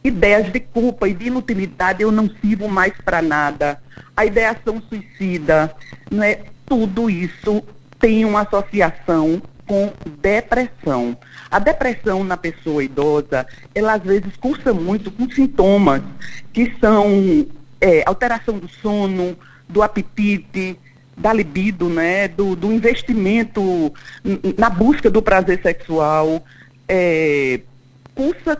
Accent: Brazilian